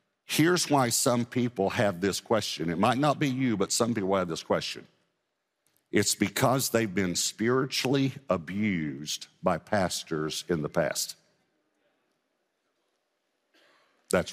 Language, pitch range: English, 95-130 Hz